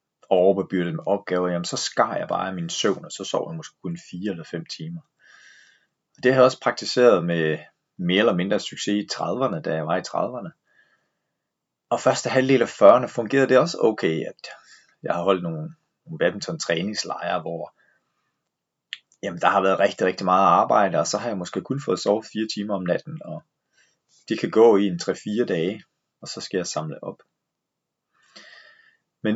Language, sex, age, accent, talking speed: Danish, male, 30-49, native, 185 wpm